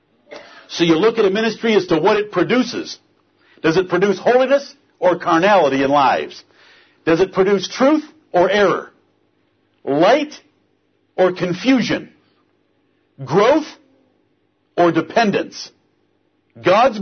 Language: English